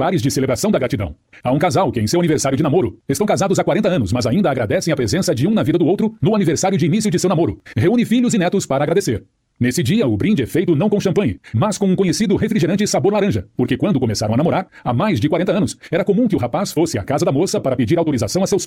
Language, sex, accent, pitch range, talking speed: Portuguese, male, Brazilian, 135-205 Hz, 265 wpm